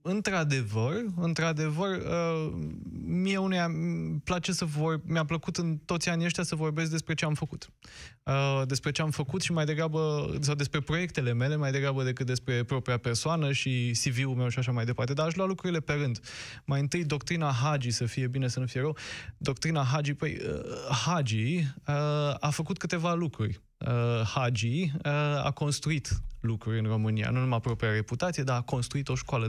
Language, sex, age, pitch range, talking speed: Romanian, male, 20-39, 120-155 Hz, 180 wpm